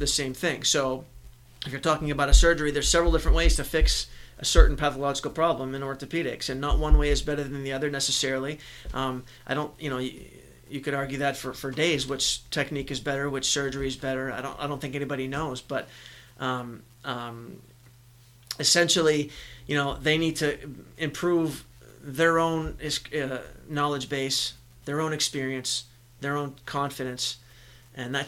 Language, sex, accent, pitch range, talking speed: English, male, American, 125-150 Hz, 175 wpm